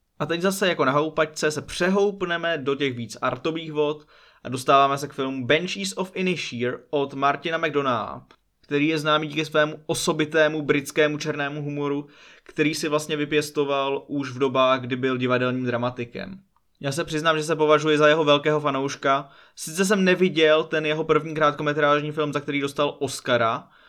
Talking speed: 165 wpm